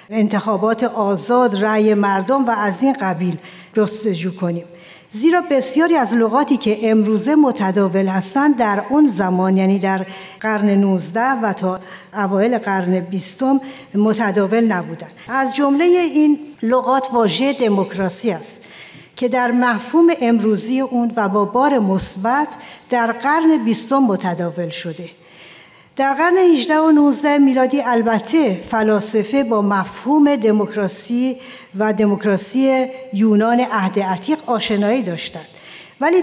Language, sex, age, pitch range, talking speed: Persian, female, 60-79, 195-260 Hz, 120 wpm